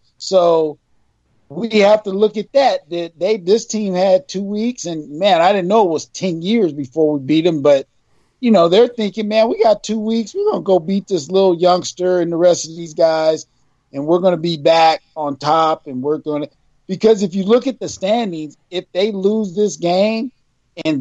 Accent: American